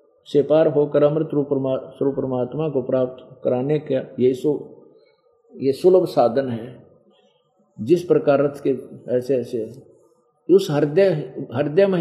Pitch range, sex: 135-175 Hz, male